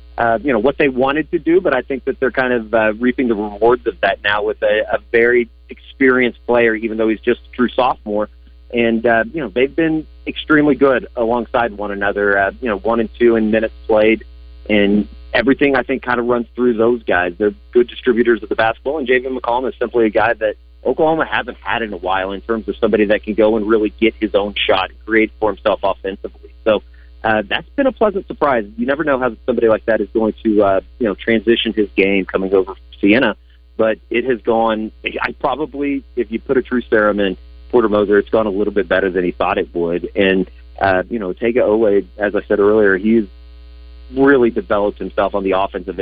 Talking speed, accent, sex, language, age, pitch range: 225 wpm, American, male, English, 30-49, 95-120 Hz